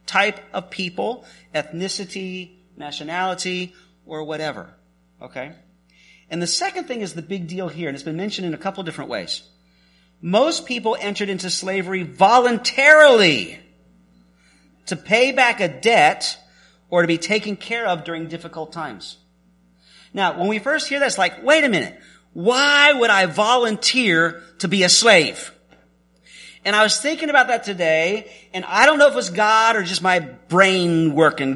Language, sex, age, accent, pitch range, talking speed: English, male, 40-59, American, 155-230 Hz, 160 wpm